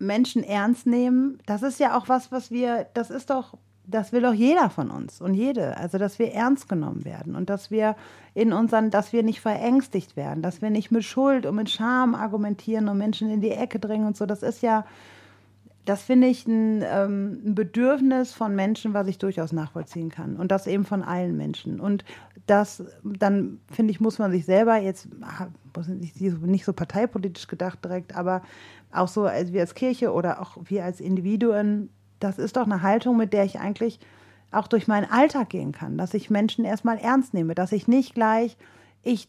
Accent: German